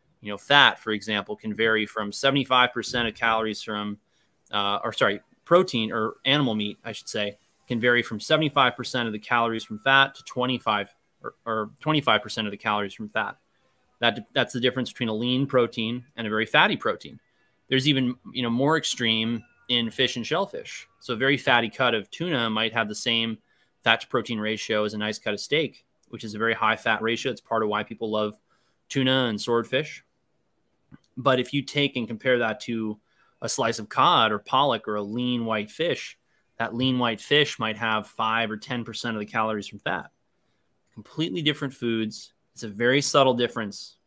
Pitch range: 110-125 Hz